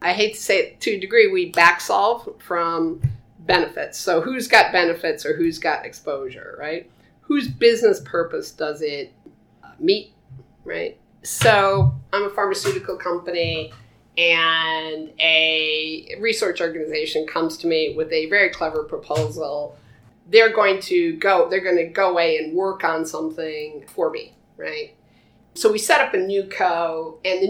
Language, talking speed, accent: English, 155 wpm, American